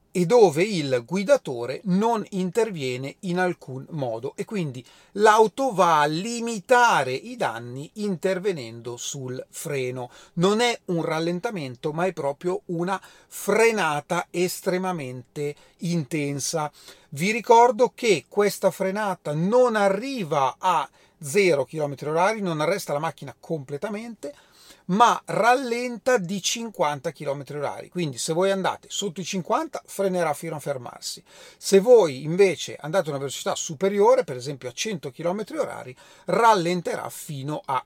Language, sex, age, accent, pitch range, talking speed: Italian, male, 40-59, native, 145-205 Hz, 130 wpm